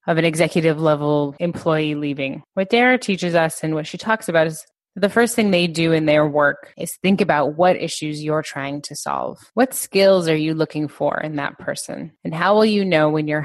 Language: English